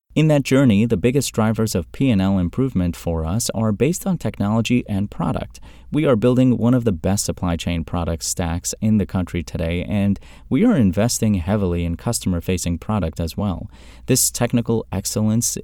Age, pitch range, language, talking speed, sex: 30-49, 85-115 Hz, English, 175 wpm, male